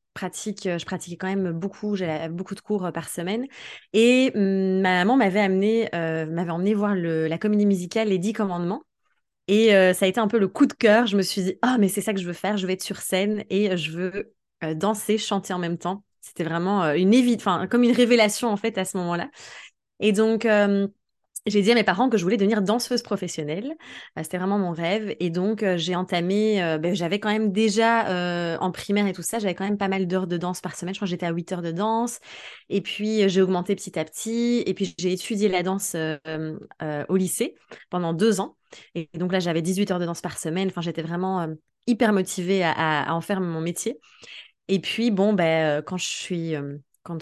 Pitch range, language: 175-210 Hz, French